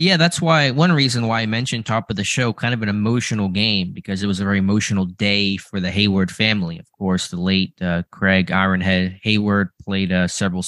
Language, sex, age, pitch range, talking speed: English, male, 20-39, 95-105 Hz, 220 wpm